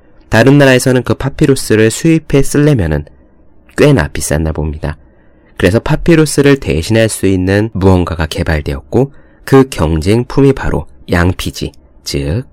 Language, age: Korean, 30-49